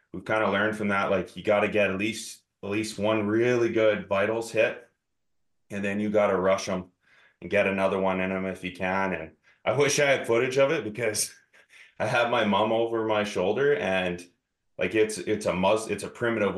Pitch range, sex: 95-115 Hz, male